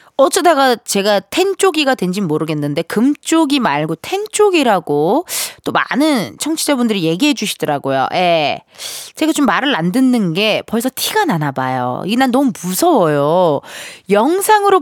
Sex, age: female, 20-39